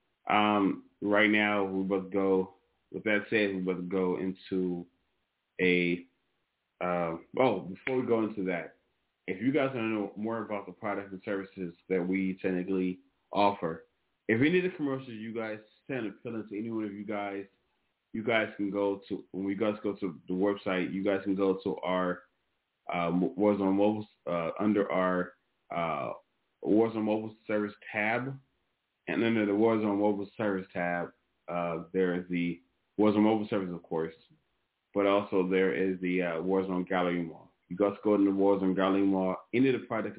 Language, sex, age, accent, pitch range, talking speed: English, male, 30-49, American, 90-105 Hz, 185 wpm